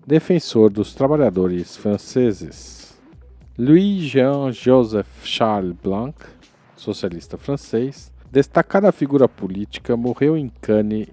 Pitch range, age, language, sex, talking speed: 95-125 Hz, 40-59, Portuguese, male, 80 wpm